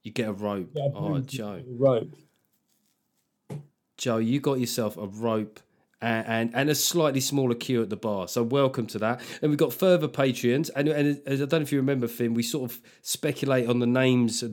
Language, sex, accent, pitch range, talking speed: English, male, British, 110-145 Hz, 200 wpm